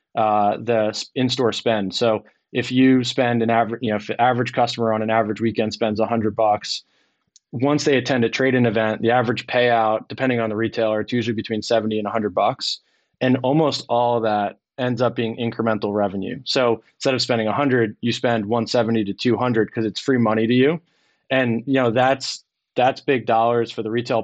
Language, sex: English, male